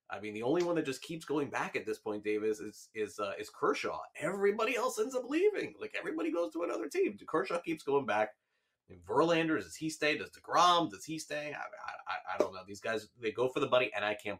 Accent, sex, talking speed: American, male, 255 wpm